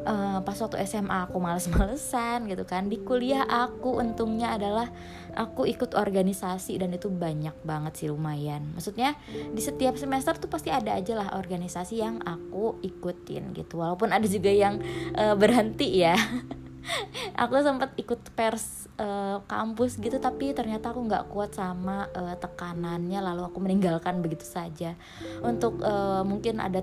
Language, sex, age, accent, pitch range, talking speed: Indonesian, female, 20-39, native, 175-230 Hz, 150 wpm